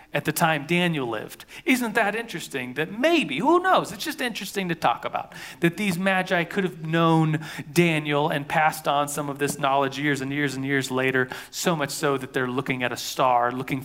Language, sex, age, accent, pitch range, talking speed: English, male, 40-59, American, 140-175 Hz, 210 wpm